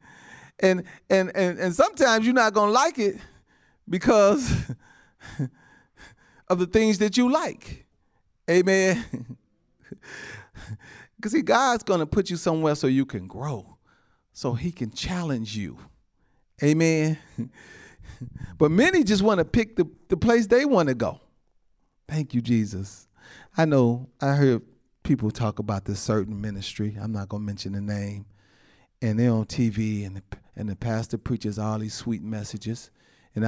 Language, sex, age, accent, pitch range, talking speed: English, male, 40-59, American, 110-175 Hz, 145 wpm